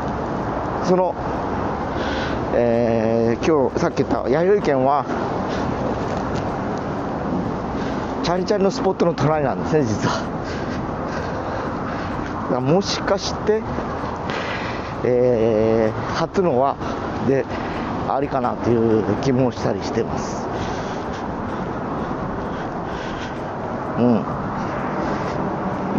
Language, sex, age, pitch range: Japanese, male, 40-59, 115-155 Hz